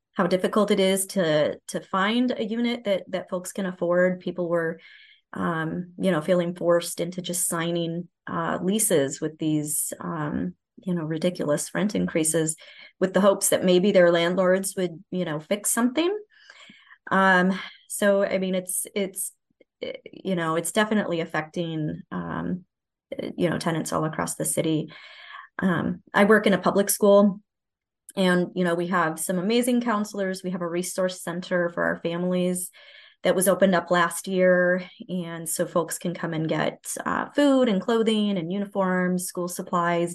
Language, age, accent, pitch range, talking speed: English, 30-49, American, 170-200 Hz, 165 wpm